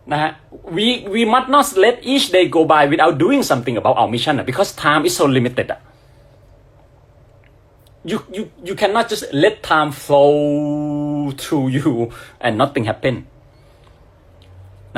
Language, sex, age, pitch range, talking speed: Vietnamese, male, 30-49, 110-150 Hz, 130 wpm